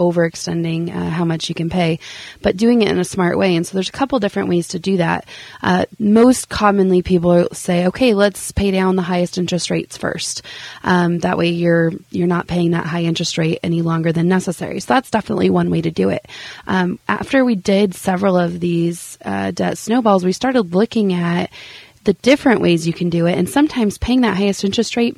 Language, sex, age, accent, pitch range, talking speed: English, female, 20-39, American, 170-200 Hz, 210 wpm